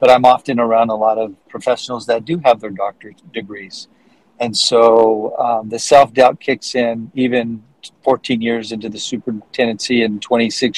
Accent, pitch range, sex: American, 110-125 Hz, male